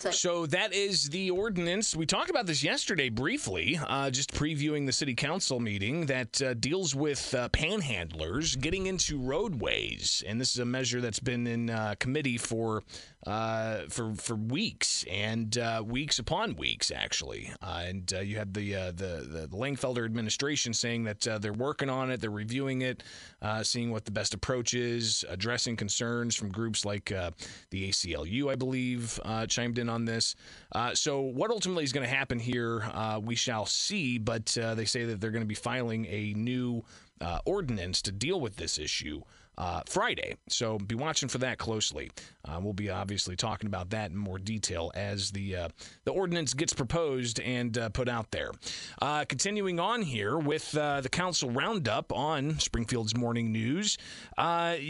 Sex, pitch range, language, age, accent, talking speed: male, 110-140 Hz, English, 30-49, American, 185 wpm